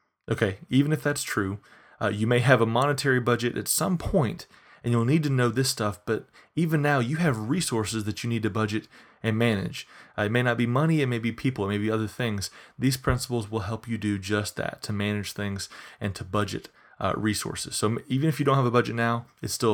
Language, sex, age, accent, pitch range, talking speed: English, male, 30-49, American, 105-135 Hz, 235 wpm